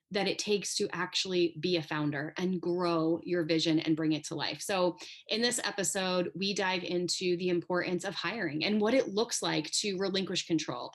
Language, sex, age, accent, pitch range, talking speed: English, female, 20-39, American, 165-200 Hz, 195 wpm